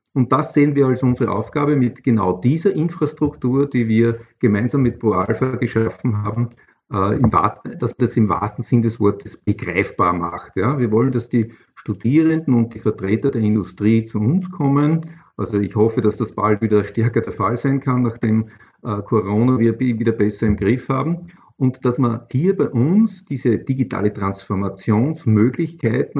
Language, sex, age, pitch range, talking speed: German, male, 50-69, 110-135 Hz, 160 wpm